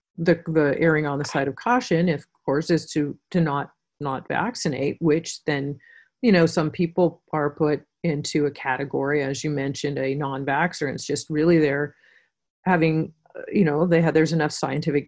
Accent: American